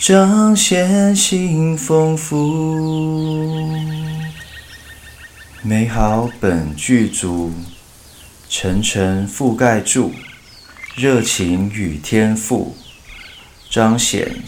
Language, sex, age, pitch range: Chinese, male, 30-49, 90-115 Hz